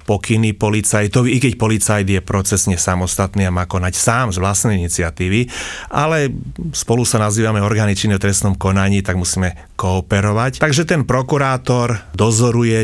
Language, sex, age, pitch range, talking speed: Slovak, male, 30-49, 95-115 Hz, 140 wpm